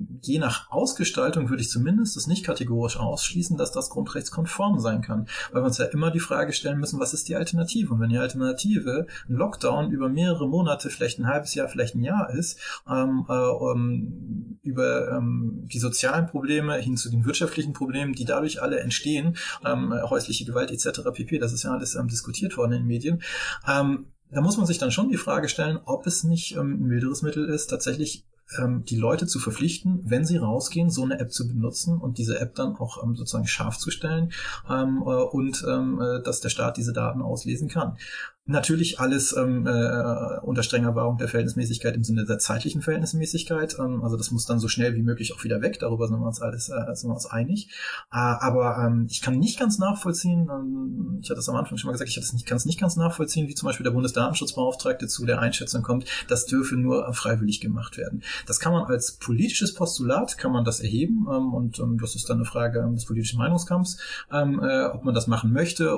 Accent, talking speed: German, 205 wpm